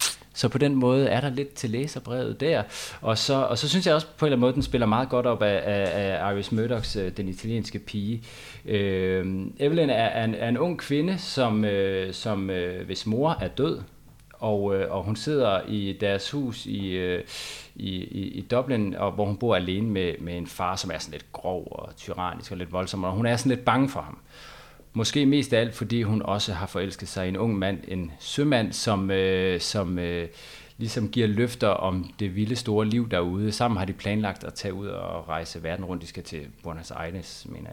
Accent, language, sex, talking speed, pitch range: native, Danish, male, 210 wpm, 95-120 Hz